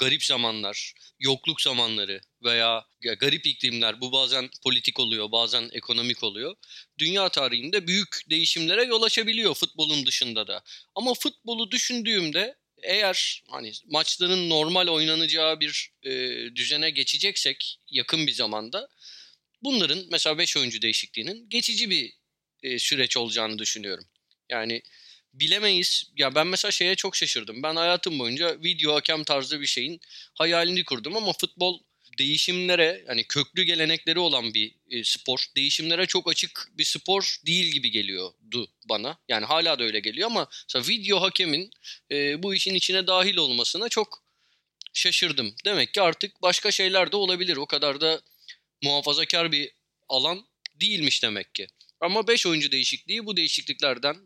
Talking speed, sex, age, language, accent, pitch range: 135 wpm, male, 30-49, Turkish, native, 130-185 Hz